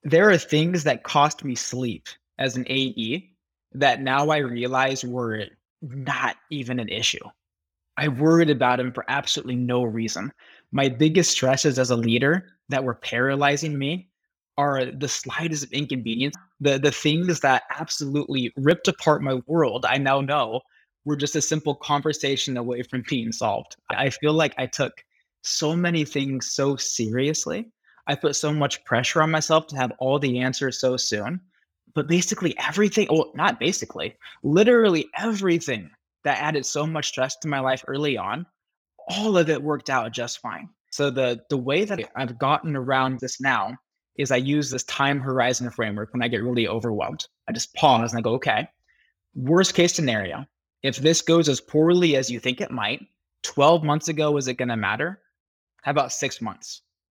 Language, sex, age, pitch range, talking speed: English, male, 20-39, 125-155 Hz, 175 wpm